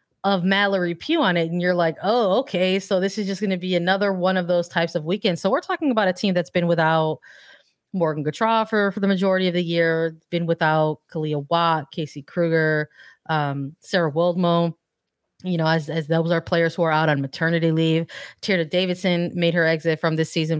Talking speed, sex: 210 wpm, female